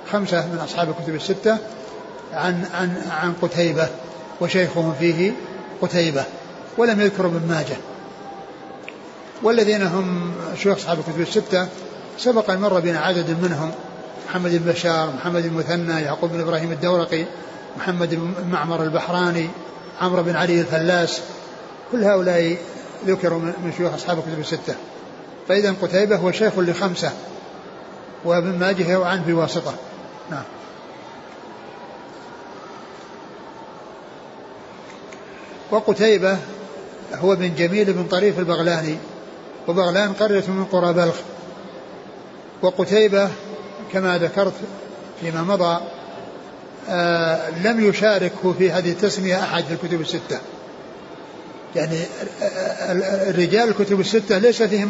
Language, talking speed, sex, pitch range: Arabic, 105 wpm, male, 170-195 Hz